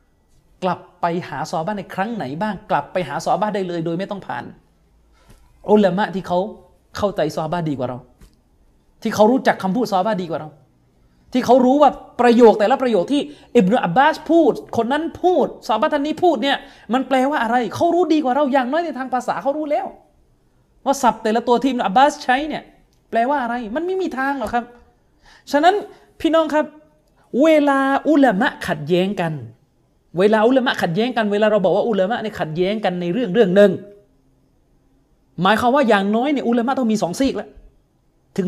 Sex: male